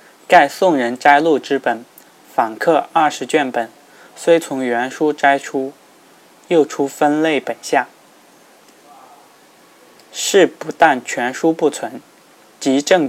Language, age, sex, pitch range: Chinese, 20-39, male, 120-150 Hz